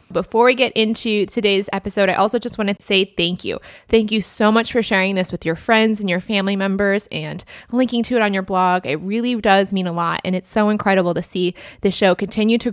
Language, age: English, 20-39